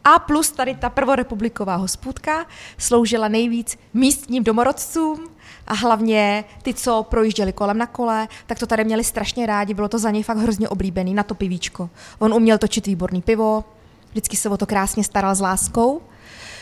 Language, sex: Czech, female